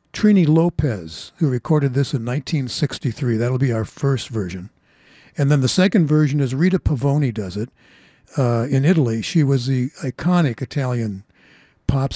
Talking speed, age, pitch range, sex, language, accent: 155 wpm, 60-79, 125-160 Hz, male, English, American